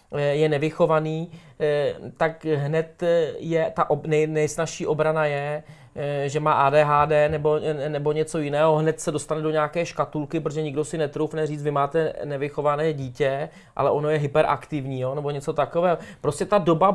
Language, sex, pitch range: Czech, male, 150-185 Hz